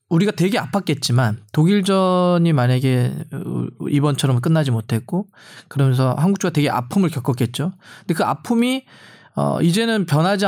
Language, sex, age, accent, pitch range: Korean, male, 20-39, native, 140-195 Hz